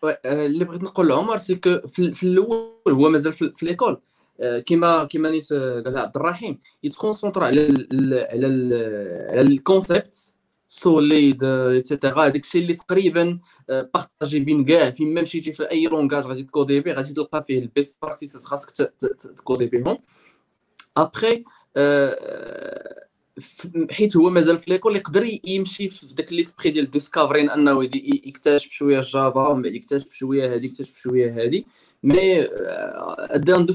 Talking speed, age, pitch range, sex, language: 125 wpm, 20-39, 140-180 Hz, male, Arabic